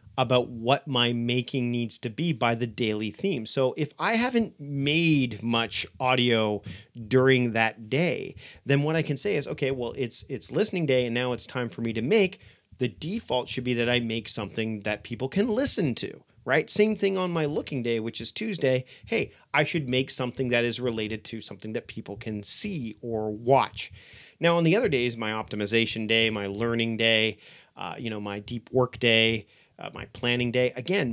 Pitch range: 115-140 Hz